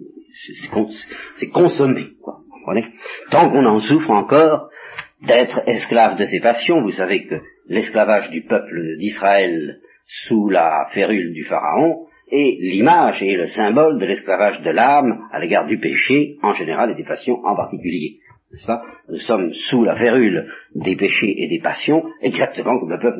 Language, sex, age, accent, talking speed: French, male, 50-69, French, 155 wpm